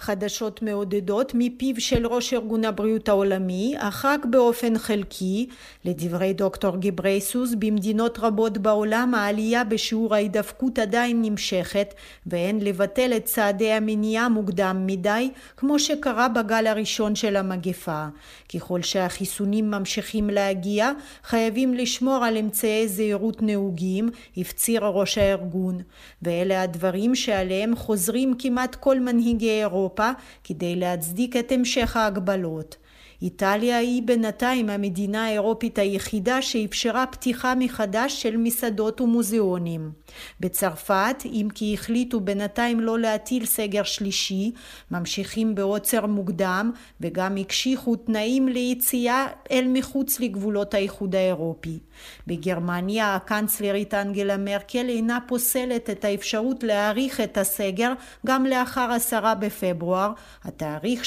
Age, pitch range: 40-59, 195-240 Hz